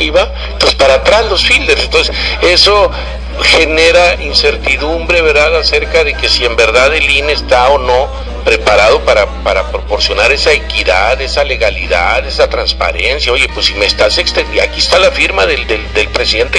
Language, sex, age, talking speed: English, male, 50-69, 165 wpm